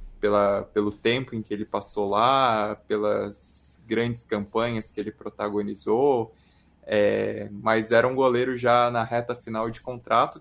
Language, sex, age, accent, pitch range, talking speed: Portuguese, male, 20-39, Brazilian, 110-130 Hz, 145 wpm